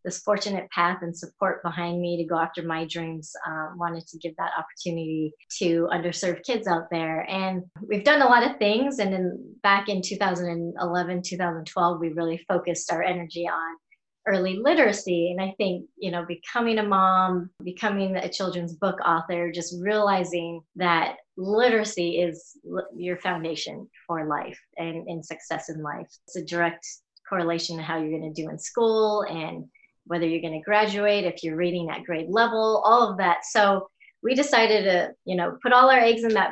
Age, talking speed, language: 30-49, 180 wpm, English